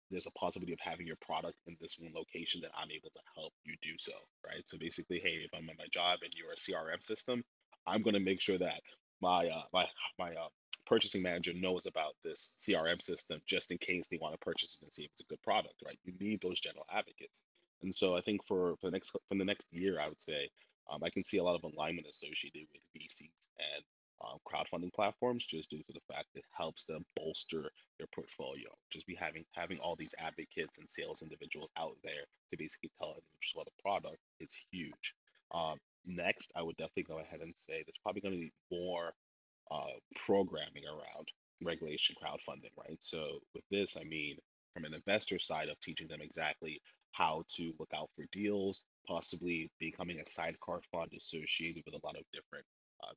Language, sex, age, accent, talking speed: English, male, 30-49, American, 210 wpm